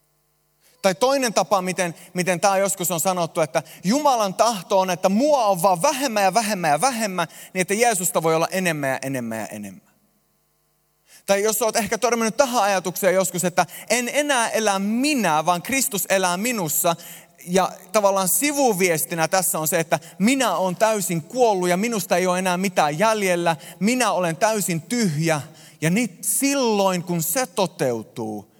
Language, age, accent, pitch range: Finnish, 30-49, native, 165-220 Hz